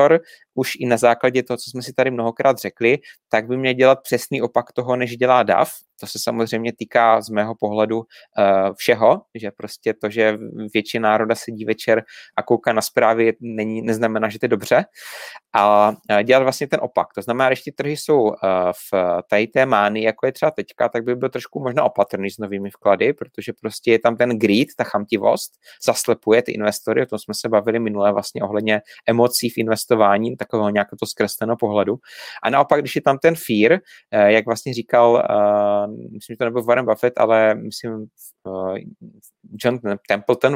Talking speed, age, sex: 185 wpm, 30-49, male